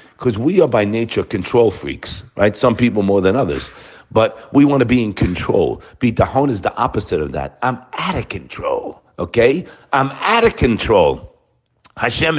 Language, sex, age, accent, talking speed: English, male, 50-69, American, 180 wpm